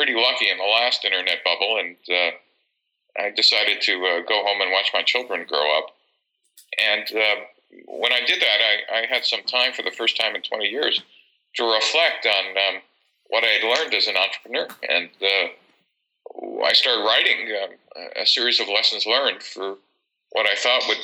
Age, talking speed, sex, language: 40-59, 190 wpm, male, English